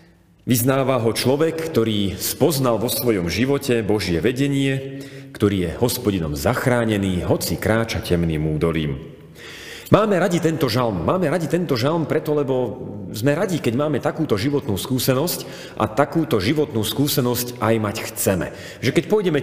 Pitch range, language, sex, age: 95-140 Hz, Slovak, male, 40-59